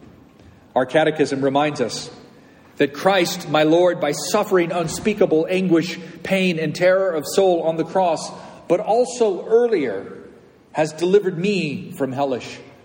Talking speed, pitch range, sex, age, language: 130 wpm, 150-190 Hz, male, 40-59, English